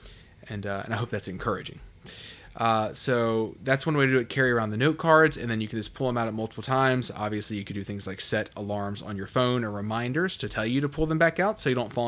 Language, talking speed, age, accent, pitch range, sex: English, 280 wpm, 20-39, American, 105-140 Hz, male